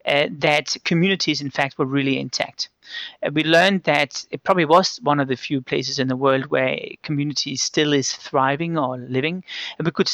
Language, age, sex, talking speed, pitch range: English, 30-49, male, 195 wpm, 135-165 Hz